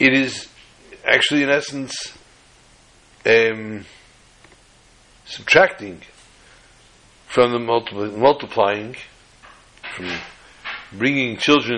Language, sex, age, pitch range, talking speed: English, male, 60-79, 115-170 Hz, 70 wpm